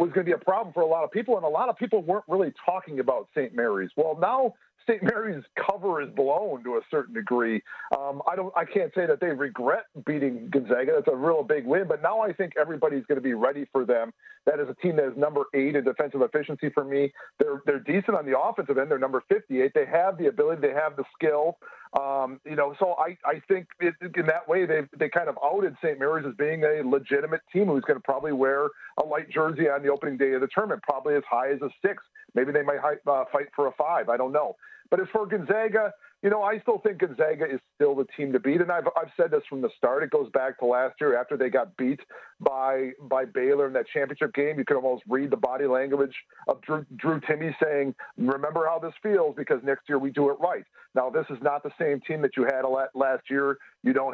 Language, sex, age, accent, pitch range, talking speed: English, male, 50-69, American, 140-210 Hz, 245 wpm